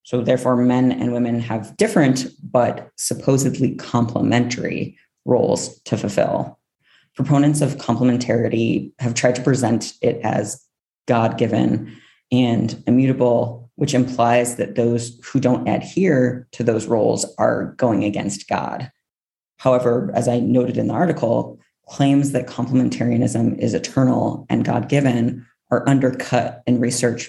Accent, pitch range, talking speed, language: American, 115-130 Hz, 125 wpm, English